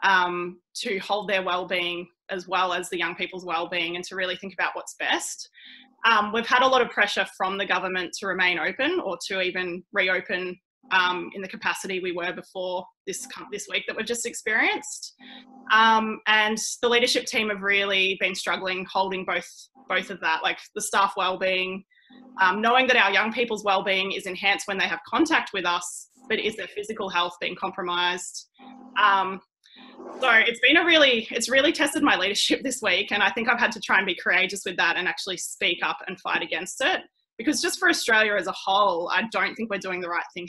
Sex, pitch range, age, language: female, 185-240 Hz, 20-39, English